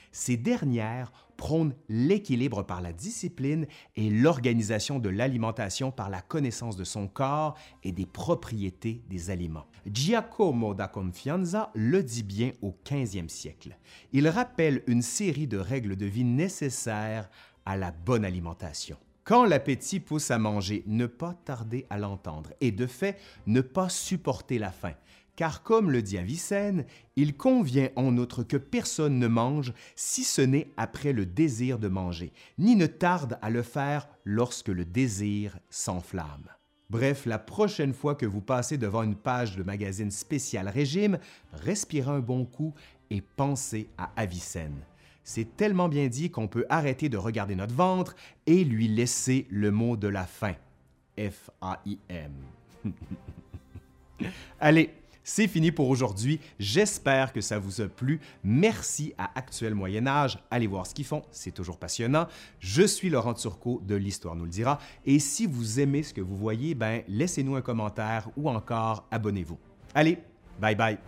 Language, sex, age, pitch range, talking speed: French, male, 30-49, 100-145 Hz, 155 wpm